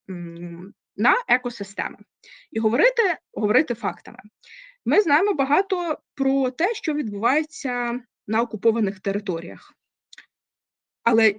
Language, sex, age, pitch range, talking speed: Ukrainian, female, 20-39, 215-300 Hz, 90 wpm